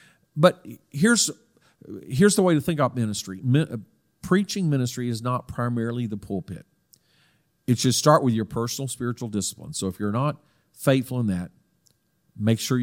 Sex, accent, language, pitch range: male, American, English, 110-150 Hz